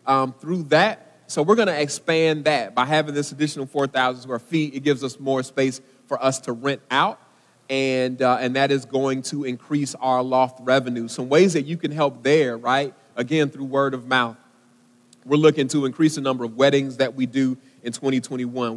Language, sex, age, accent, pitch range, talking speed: English, male, 30-49, American, 130-155 Hz, 200 wpm